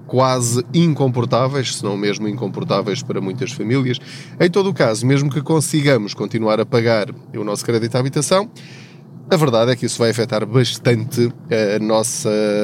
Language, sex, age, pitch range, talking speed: Portuguese, male, 20-39, 115-140 Hz, 160 wpm